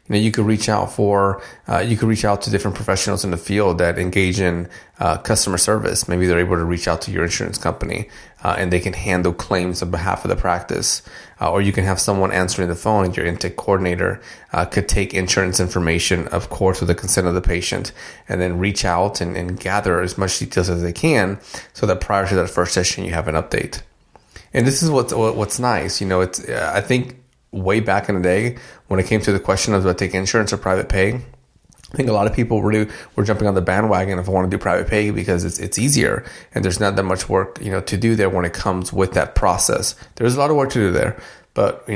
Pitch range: 90-105 Hz